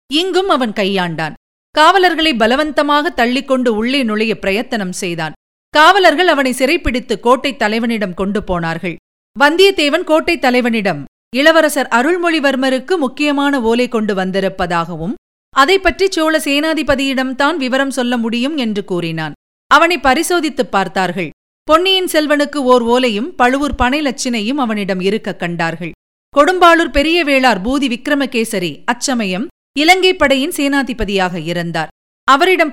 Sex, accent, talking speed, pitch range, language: female, native, 105 wpm, 205-300 Hz, Tamil